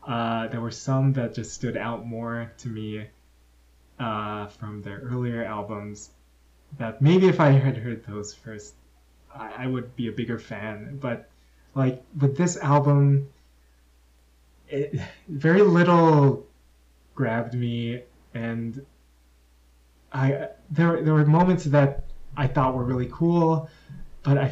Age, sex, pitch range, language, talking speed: 20-39, male, 105-140 Hz, English, 135 wpm